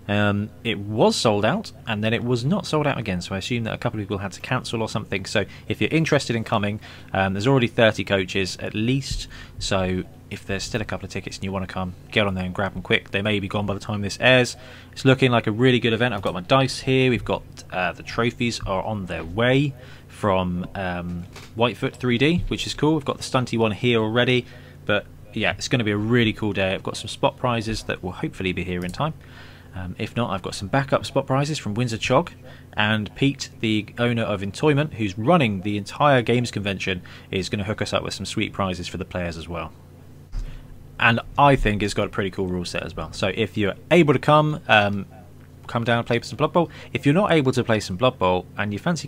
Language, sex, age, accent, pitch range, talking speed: English, male, 20-39, British, 95-125 Hz, 245 wpm